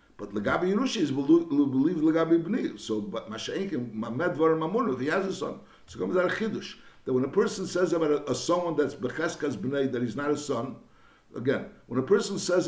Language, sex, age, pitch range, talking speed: English, male, 60-79, 130-165 Hz, 165 wpm